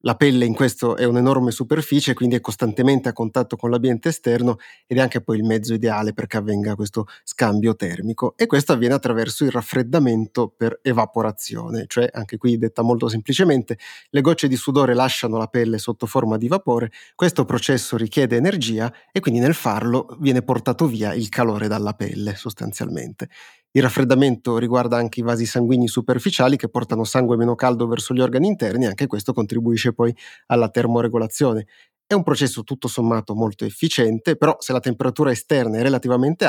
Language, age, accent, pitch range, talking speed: Italian, 30-49, native, 115-130 Hz, 175 wpm